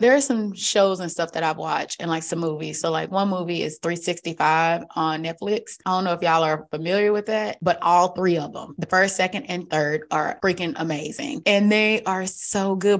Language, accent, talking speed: English, American, 220 wpm